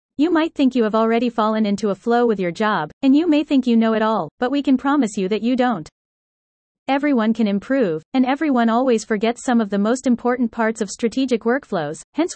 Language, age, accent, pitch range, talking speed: English, 30-49, American, 210-255 Hz, 225 wpm